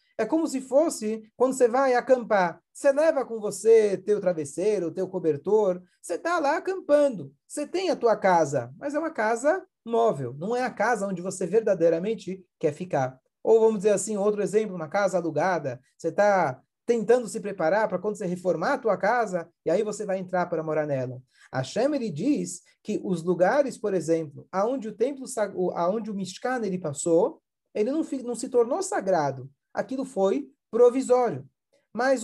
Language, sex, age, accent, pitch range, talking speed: Portuguese, male, 40-59, Brazilian, 170-245 Hz, 175 wpm